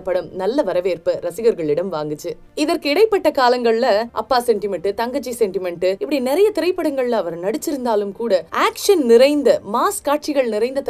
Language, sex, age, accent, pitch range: Tamil, female, 20-39, native, 200-300 Hz